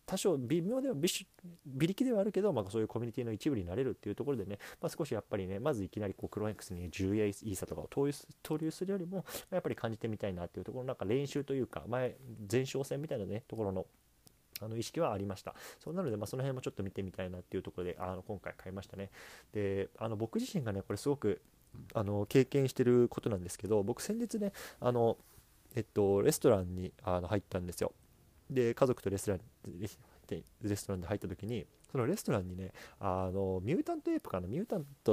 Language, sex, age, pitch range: Japanese, male, 20-39, 95-150 Hz